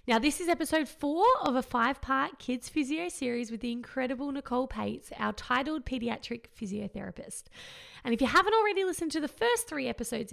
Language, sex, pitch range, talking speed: English, female, 230-305 Hz, 180 wpm